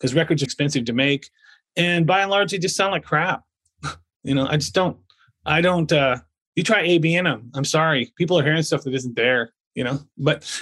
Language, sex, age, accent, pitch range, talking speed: English, male, 30-49, American, 135-165 Hz, 220 wpm